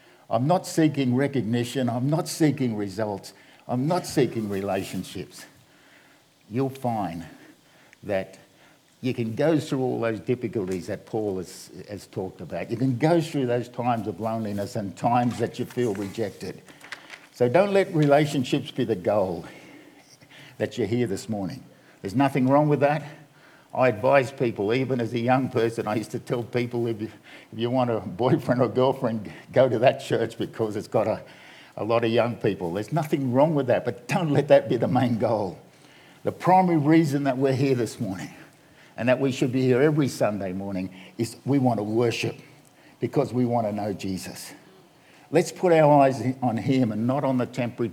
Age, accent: 50-69, Australian